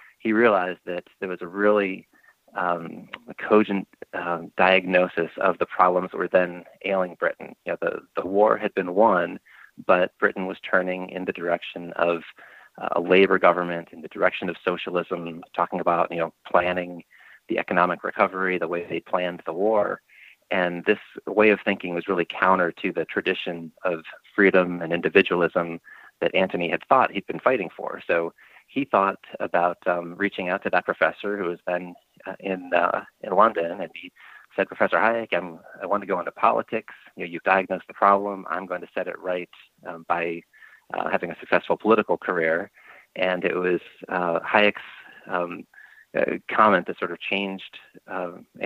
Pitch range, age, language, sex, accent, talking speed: 85-100 Hz, 30-49, English, male, American, 180 wpm